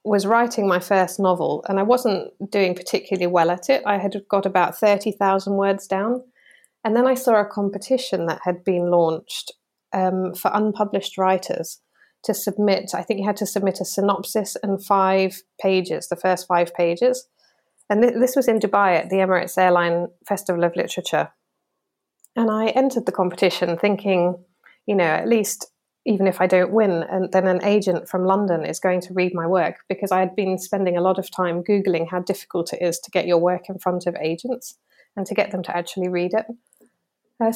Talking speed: 190 wpm